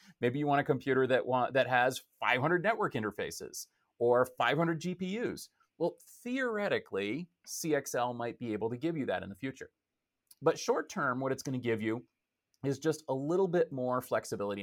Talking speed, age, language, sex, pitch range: 170 wpm, 30-49, English, male, 110-150 Hz